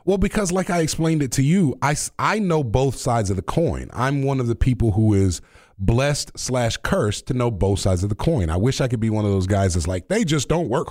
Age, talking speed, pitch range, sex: 30-49, 265 wpm, 100-130 Hz, male